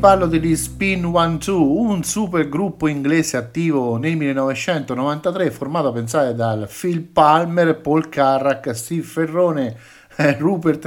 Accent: native